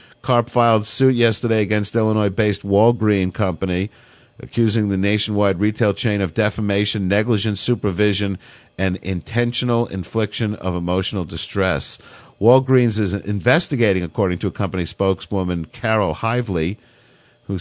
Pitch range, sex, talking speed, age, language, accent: 95-115 Hz, male, 115 wpm, 50-69, English, American